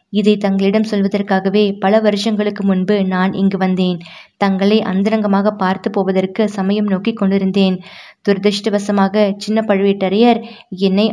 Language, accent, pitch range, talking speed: Tamil, native, 190-210 Hz, 110 wpm